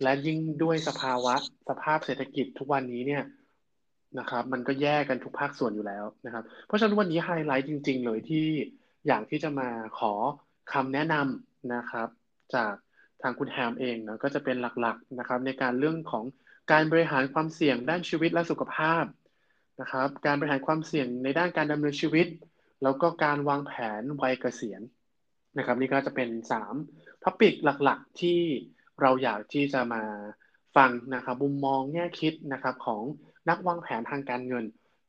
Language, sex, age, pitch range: Thai, male, 20-39, 125-155 Hz